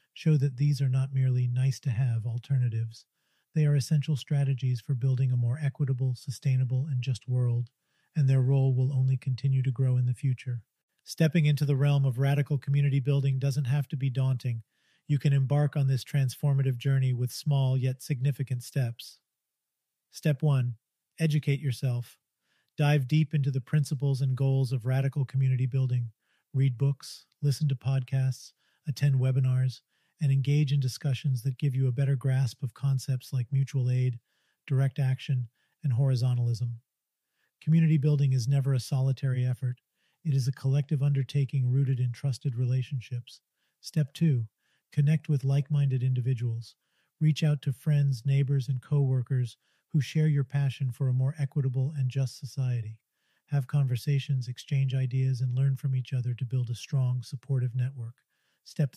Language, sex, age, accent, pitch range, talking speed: English, male, 40-59, American, 130-140 Hz, 160 wpm